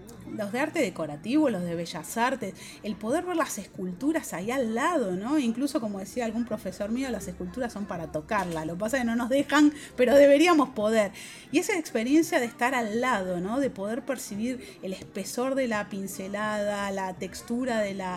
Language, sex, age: Spanish, female, 30-49